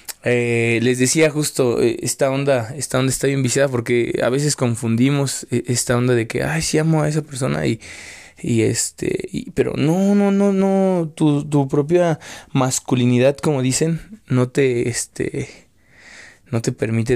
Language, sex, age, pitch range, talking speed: Spanish, male, 20-39, 115-145 Hz, 165 wpm